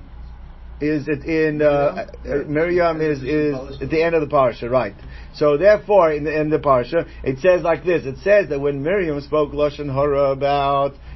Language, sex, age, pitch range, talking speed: English, male, 50-69, 145-195 Hz, 195 wpm